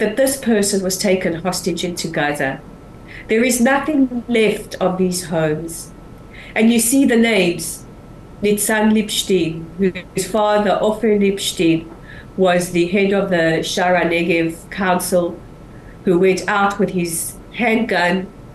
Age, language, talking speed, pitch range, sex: 40-59, English, 130 wpm, 175-220 Hz, female